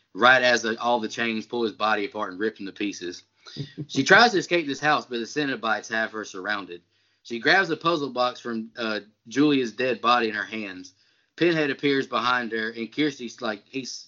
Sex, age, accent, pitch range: male, 20-39, American, 115-150 Hz